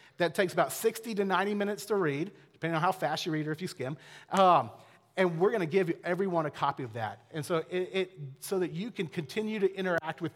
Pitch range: 145-195 Hz